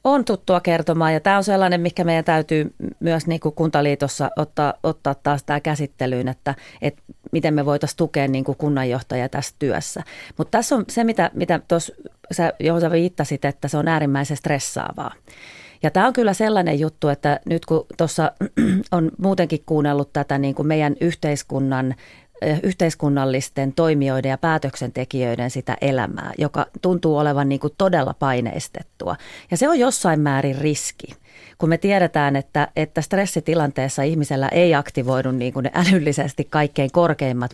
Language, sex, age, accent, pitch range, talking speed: Finnish, female, 30-49, native, 135-165 Hz, 145 wpm